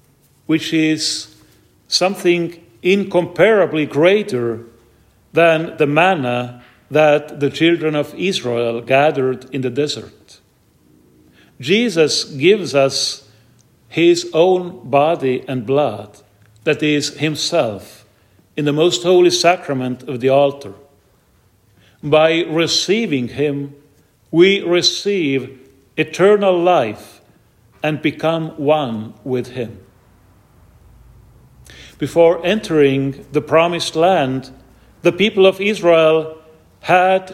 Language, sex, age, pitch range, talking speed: English, male, 50-69, 120-170 Hz, 95 wpm